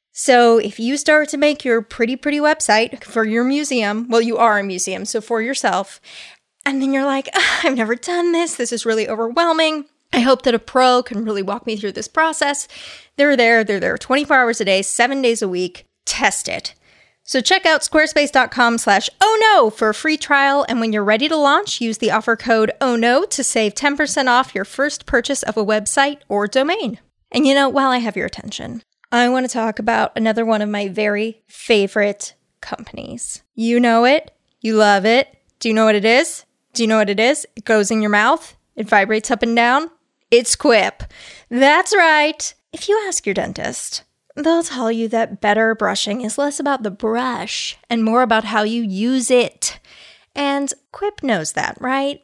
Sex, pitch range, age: female, 220-280 Hz, 20-39